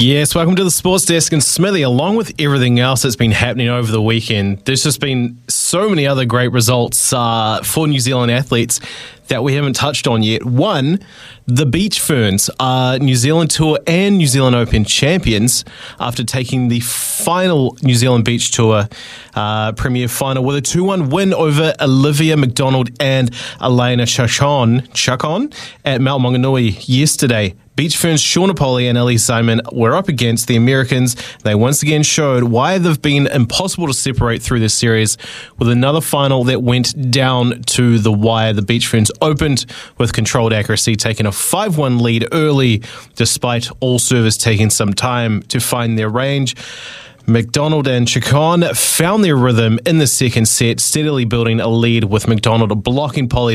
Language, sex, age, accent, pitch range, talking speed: English, male, 20-39, Australian, 115-145 Hz, 165 wpm